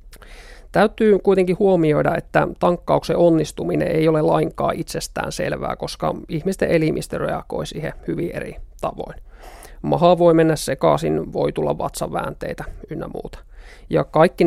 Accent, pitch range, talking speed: native, 155-180 Hz, 125 wpm